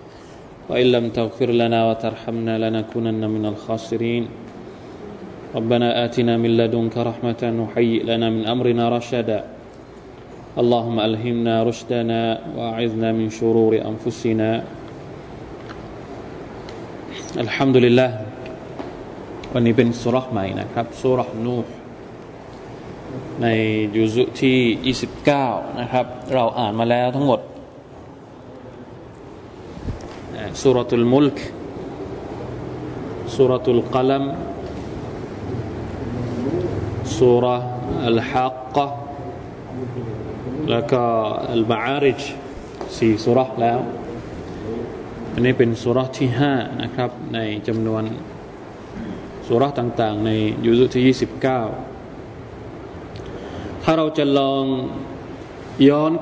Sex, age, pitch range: male, 20-39, 115-130 Hz